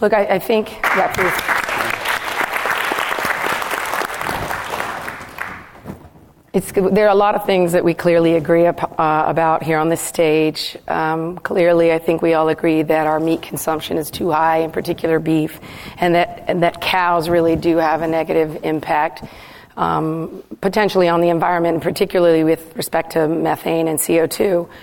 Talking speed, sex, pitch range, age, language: 155 wpm, female, 165-180 Hz, 40-59, English